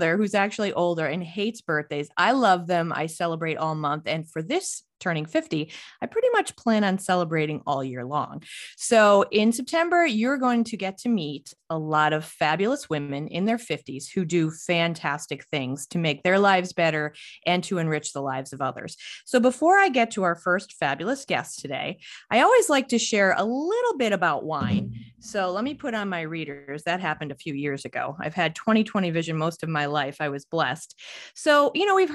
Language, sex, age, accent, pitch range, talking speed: English, female, 30-49, American, 155-230 Hz, 200 wpm